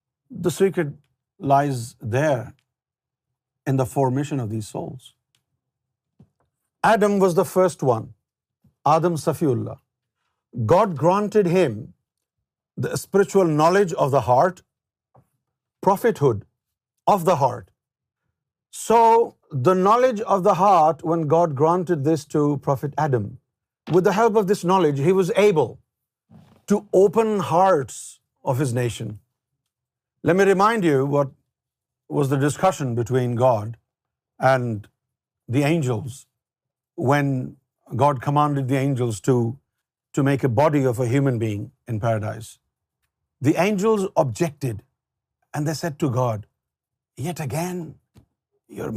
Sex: male